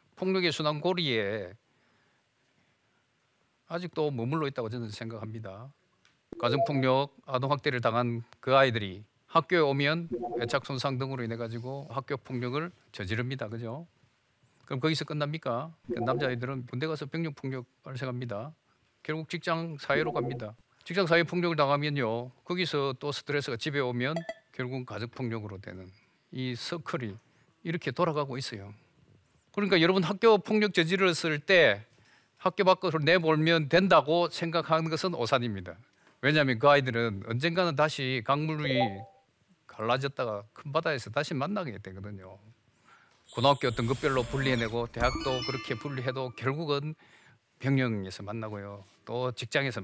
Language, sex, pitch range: Korean, male, 115-155 Hz